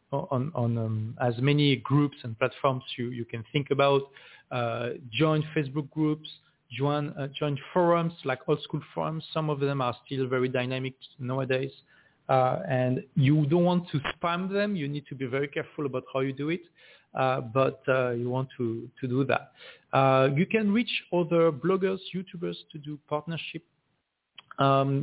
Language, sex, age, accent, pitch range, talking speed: English, male, 40-59, French, 130-155 Hz, 175 wpm